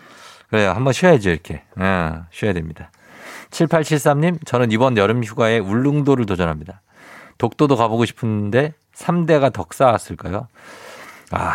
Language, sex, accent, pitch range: Korean, male, native, 95-130 Hz